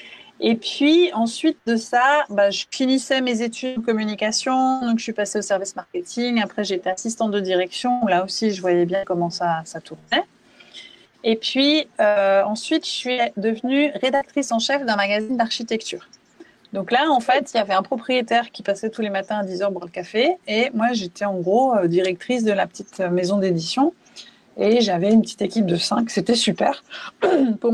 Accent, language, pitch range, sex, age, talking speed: French, French, 195-250 Hz, female, 30-49, 190 wpm